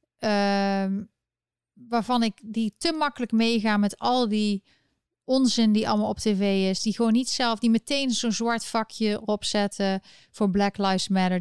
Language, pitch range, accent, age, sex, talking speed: Dutch, 205-250 Hz, Dutch, 30-49, female, 160 wpm